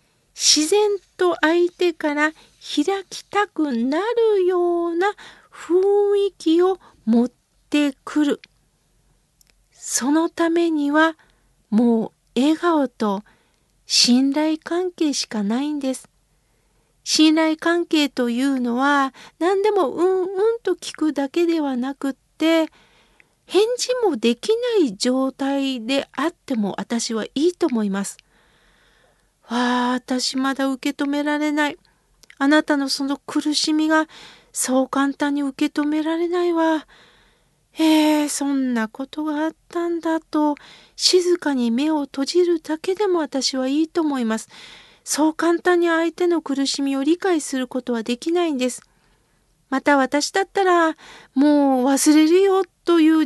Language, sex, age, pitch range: Japanese, female, 50-69, 270-345 Hz